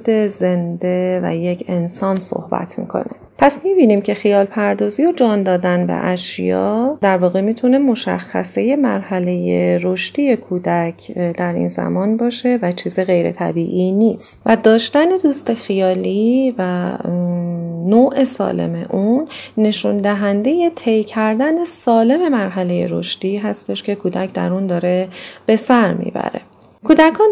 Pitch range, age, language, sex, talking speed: 175-225 Hz, 30-49, Persian, female, 125 wpm